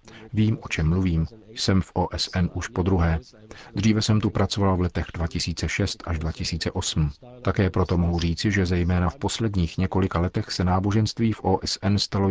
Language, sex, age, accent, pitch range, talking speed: Czech, male, 40-59, native, 85-100 Hz, 165 wpm